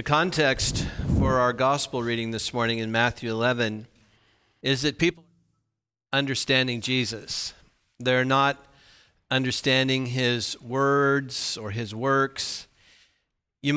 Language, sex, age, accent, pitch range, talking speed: English, male, 50-69, American, 120-140 Hz, 115 wpm